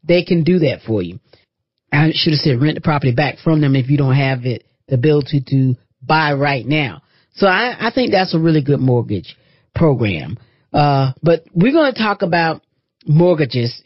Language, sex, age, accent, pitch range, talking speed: English, female, 40-59, American, 130-165 Hz, 190 wpm